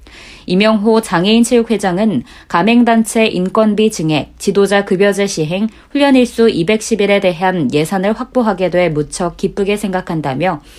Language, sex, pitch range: Korean, female, 180-225 Hz